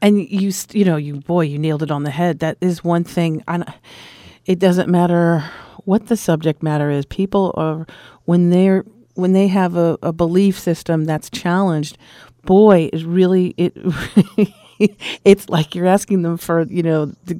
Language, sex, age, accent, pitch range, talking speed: English, female, 40-59, American, 165-195 Hz, 180 wpm